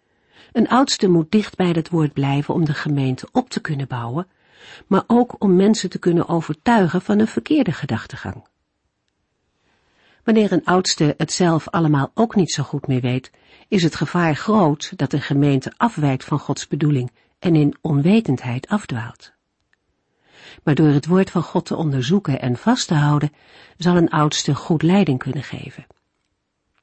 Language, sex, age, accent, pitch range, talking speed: Dutch, female, 50-69, Dutch, 140-190 Hz, 160 wpm